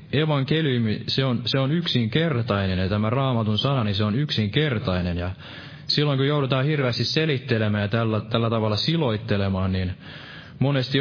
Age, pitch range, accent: 20-39, 110-145 Hz, native